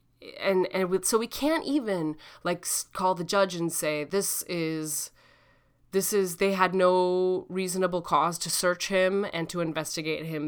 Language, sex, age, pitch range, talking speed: English, female, 20-39, 160-220 Hz, 160 wpm